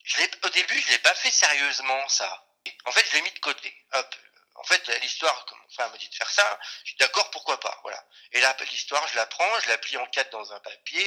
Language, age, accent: French, 40-59, French